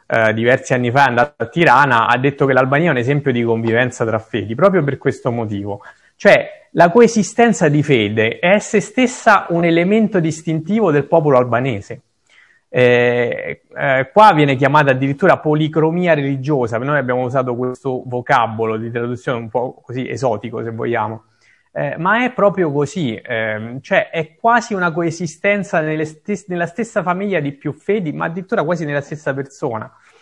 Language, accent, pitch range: Italian, native, 125-180 Hz